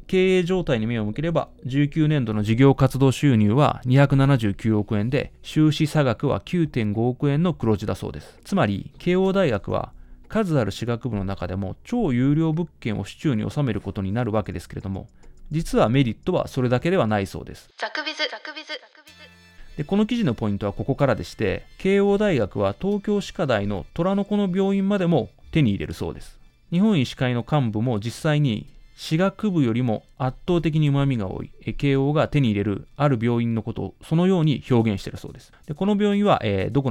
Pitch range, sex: 105-165 Hz, male